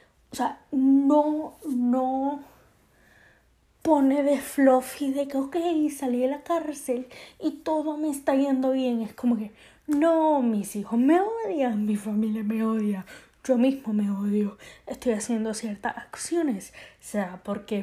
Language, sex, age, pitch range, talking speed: English, female, 10-29, 220-280 Hz, 145 wpm